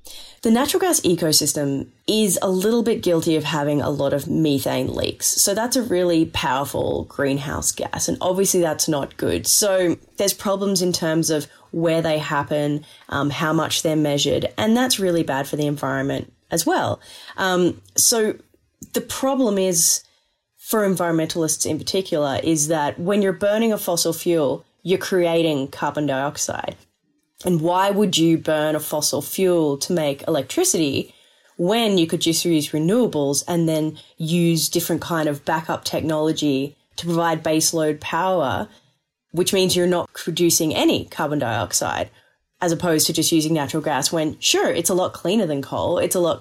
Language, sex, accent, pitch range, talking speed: English, female, Australian, 150-180 Hz, 165 wpm